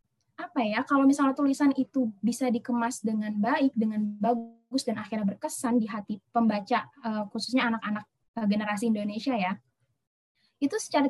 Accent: native